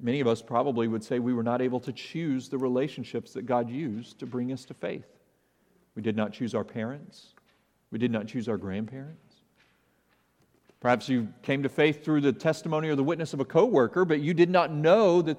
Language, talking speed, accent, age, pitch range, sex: English, 210 wpm, American, 40-59, 125-175 Hz, male